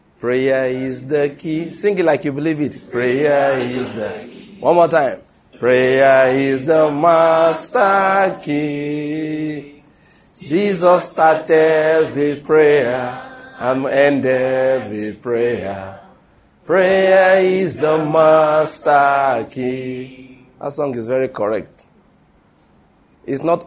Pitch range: 135-165 Hz